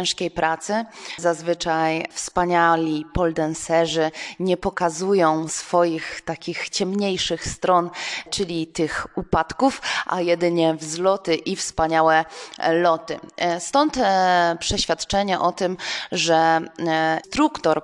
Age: 20-39